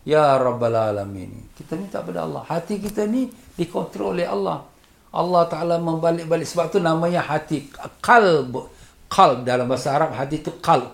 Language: Malay